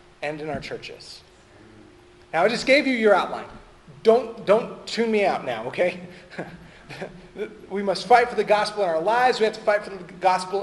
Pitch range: 185-235 Hz